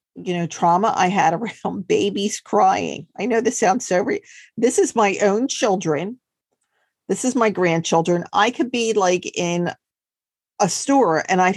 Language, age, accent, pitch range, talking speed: English, 50-69, American, 180-250 Hz, 165 wpm